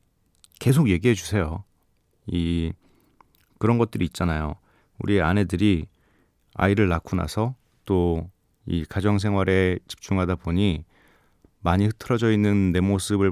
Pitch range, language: 90-115 Hz, Korean